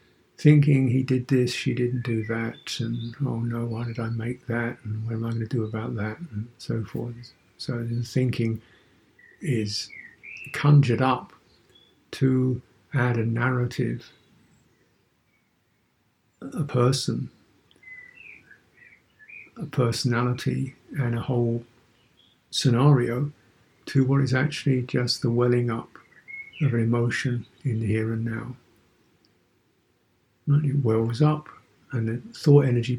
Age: 60-79